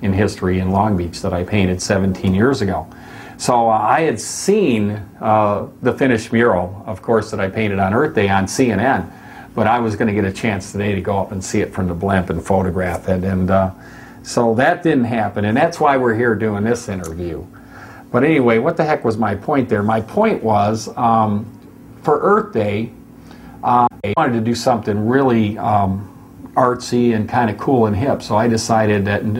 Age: 50-69